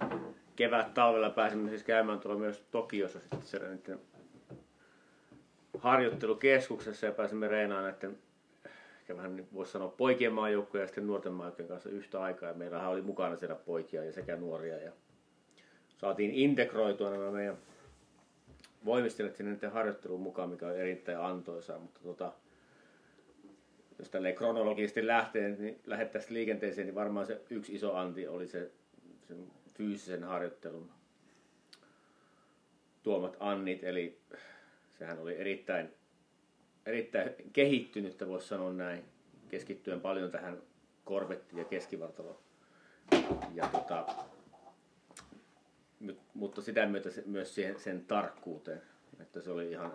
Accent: native